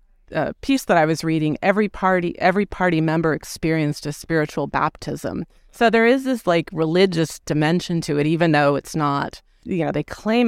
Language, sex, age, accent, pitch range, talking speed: English, female, 30-49, American, 155-195 Hz, 185 wpm